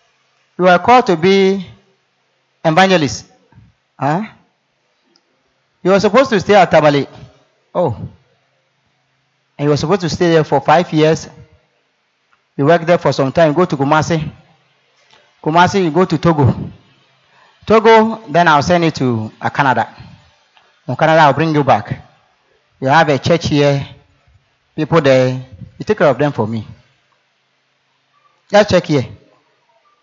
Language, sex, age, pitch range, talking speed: English, male, 30-49, 125-165 Hz, 140 wpm